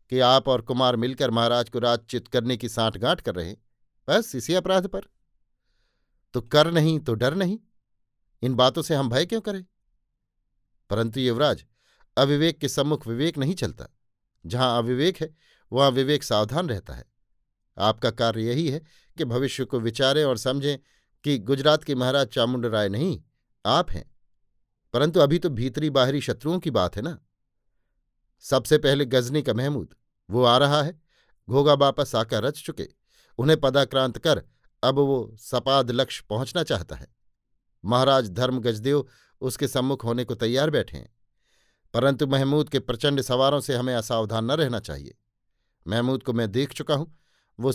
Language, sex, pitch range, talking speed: Hindi, male, 120-145 Hz, 155 wpm